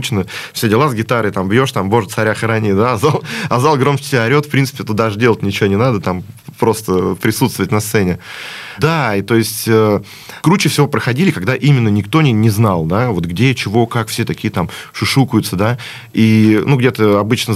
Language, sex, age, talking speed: Russian, male, 20-39, 200 wpm